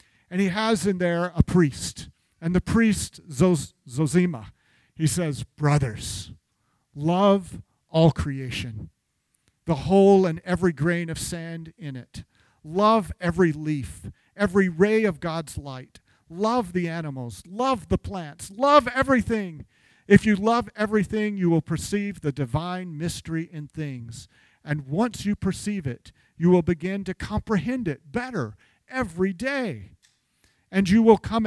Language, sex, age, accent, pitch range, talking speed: English, male, 50-69, American, 145-195 Hz, 135 wpm